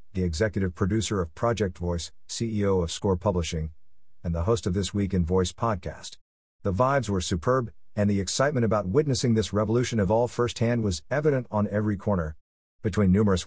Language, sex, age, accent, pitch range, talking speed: English, male, 50-69, American, 90-115 Hz, 180 wpm